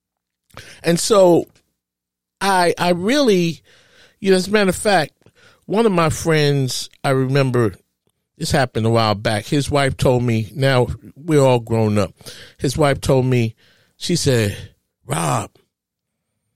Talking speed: 140 wpm